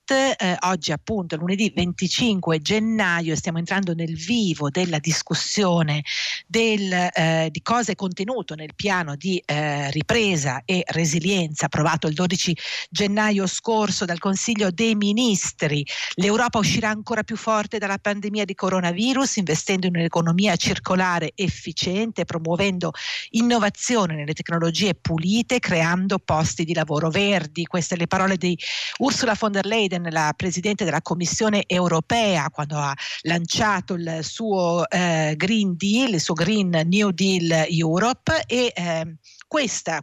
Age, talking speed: 50-69, 125 wpm